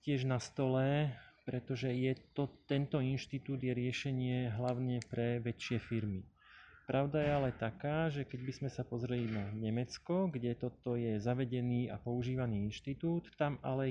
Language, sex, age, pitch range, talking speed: Slovak, male, 30-49, 120-135 Hz, 150 wpm